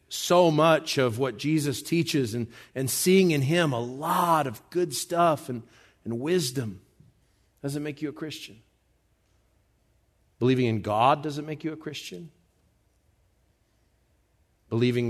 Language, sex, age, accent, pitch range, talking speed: English, male, 50-69, American, 105-135 Hz, 130 wpm